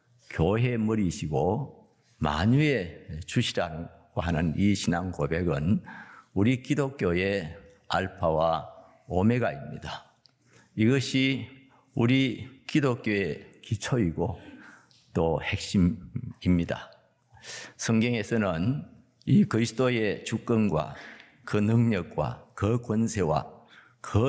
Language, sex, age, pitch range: Korean, male, 50-69, 90-125 Hz